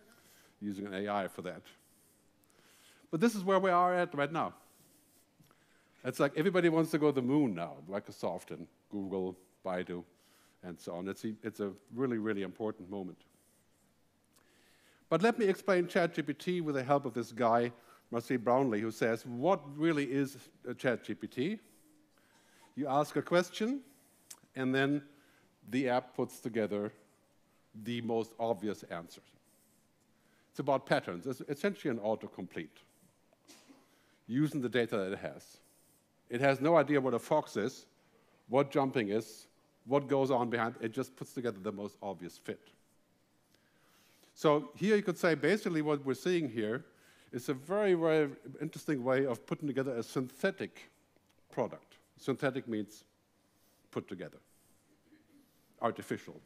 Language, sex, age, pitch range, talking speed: English, male, 50-69, 110-155 Hz, 140 wpm